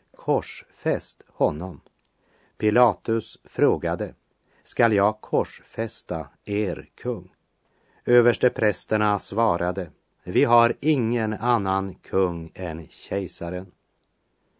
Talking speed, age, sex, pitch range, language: 80 wpm, 40-59, male, 95-120 Hz, Swedish